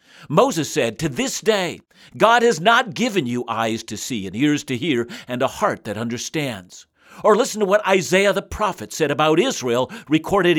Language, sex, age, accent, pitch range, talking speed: English, male, 60-79, American, 130-215 Hz, 185 wpm